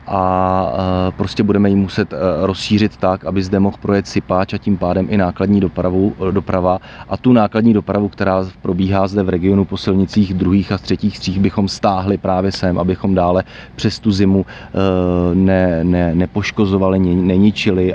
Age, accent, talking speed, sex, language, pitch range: 30-49, native, 155 wpm, male, Czech, 90-105 Hz